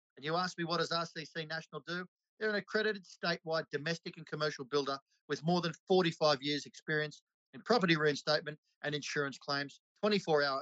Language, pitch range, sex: English, 145-170 Hz, male